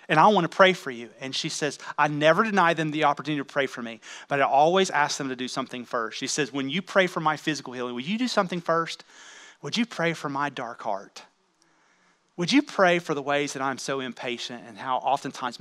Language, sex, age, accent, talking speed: English, male, 30-49, American, 240 wpm